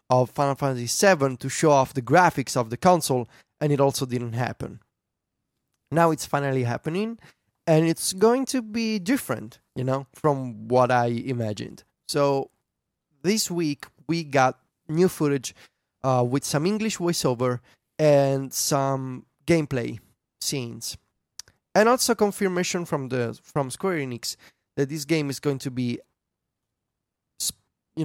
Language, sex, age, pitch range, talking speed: English, male, 20-39, 120-155 Hz, 135 wpm